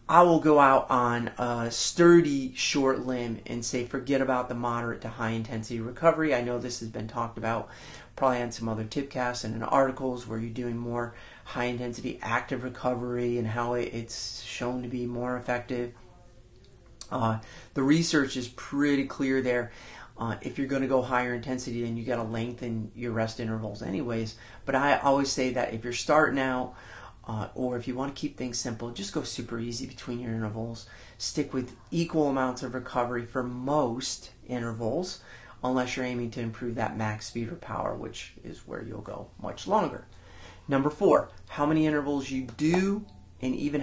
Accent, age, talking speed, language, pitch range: American, 30-49, 180 wpm, English, 115-130 Hz